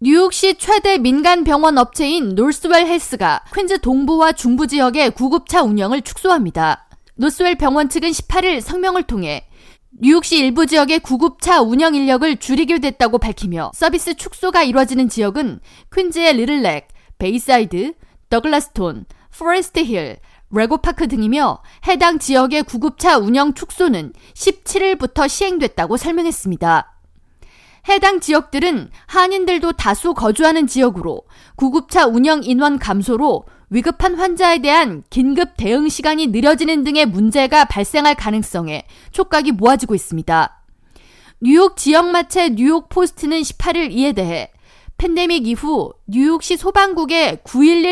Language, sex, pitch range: Korean, female, 250-335 Hz